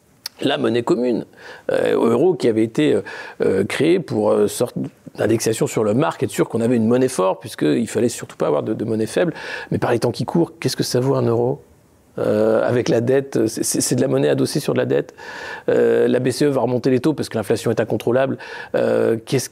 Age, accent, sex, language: 50-69, French, male, French